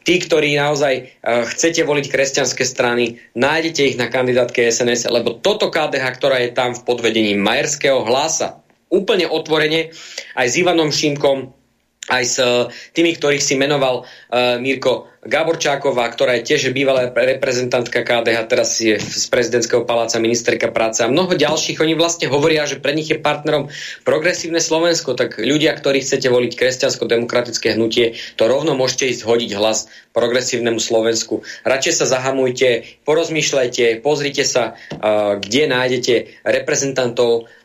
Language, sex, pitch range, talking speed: Slovak, male, 115-145 Hz, 140 wpm